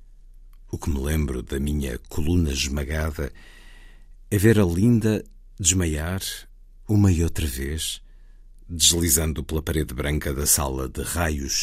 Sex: male